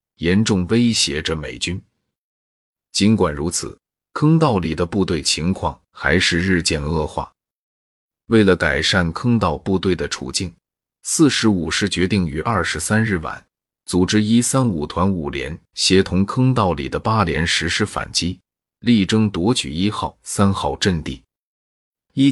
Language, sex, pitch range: Chinese, male, 85-110 Hz